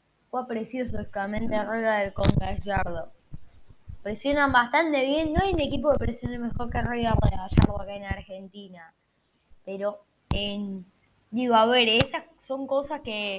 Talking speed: 160 wpm